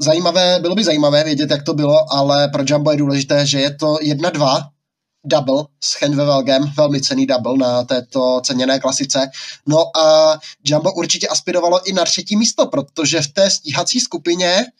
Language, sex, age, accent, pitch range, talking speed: Czech, male, 20-39, native, 145-180 Hz, 165 wpm